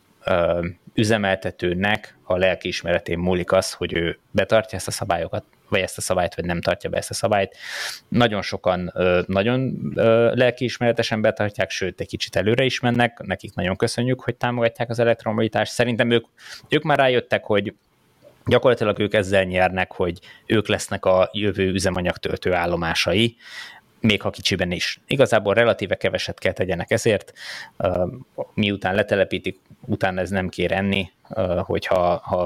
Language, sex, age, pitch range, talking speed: Hungarian, male, 20-39, 90-115 Hz, 140 wpm